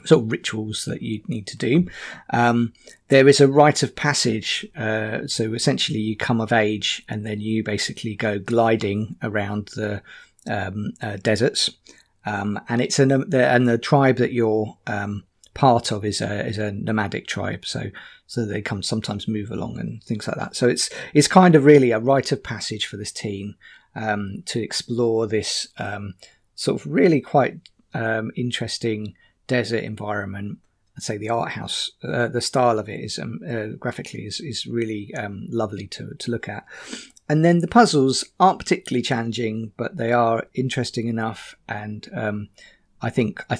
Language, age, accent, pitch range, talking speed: English, 40-59, British, 105-120 Hz, 175 wpm